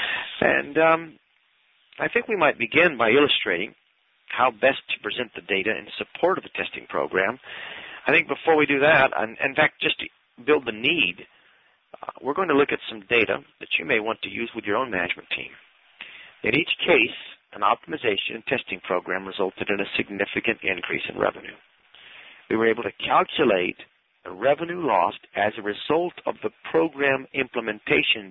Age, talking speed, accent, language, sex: 40-59, 175 wpm, American, English, male